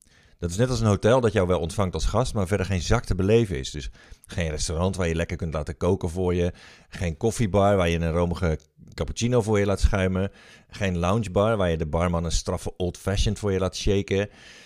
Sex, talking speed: male, 220 wpm